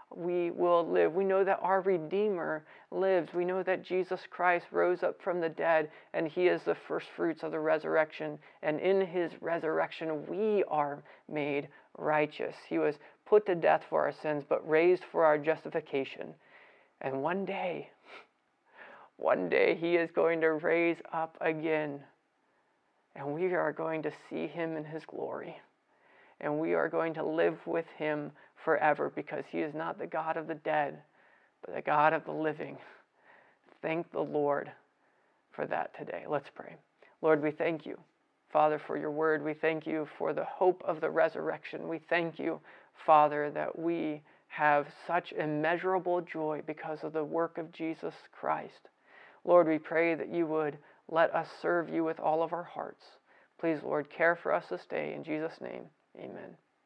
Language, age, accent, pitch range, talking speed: English, 40-59, American, 150-170 Hz, 170 wpm